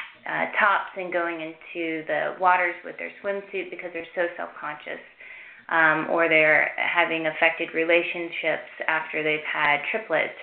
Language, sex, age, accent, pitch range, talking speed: English, female, 20-39, American, 155-185 Hz, 130 wpm